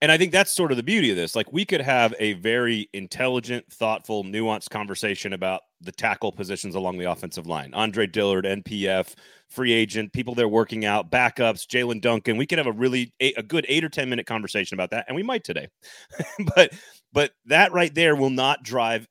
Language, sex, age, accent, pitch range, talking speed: English, male, 30-49, American, 110-145 Hz, 210 wpm